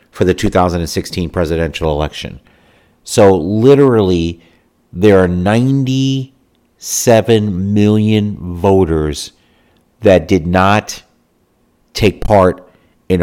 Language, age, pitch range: English, 50-69, 85-105 Hz